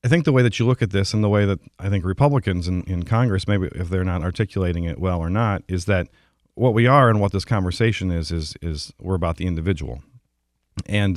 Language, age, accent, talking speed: English, 40-59, American, 240 wpm